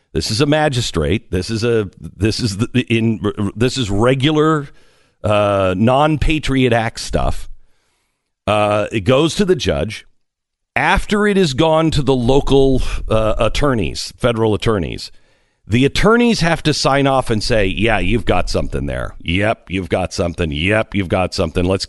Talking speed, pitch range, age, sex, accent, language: 155 wpm, 90-130 Hz, 50-69, male, American, English